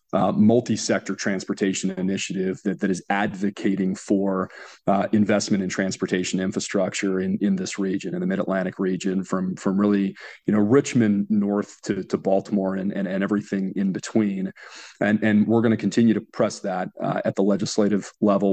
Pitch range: 95-110 Hz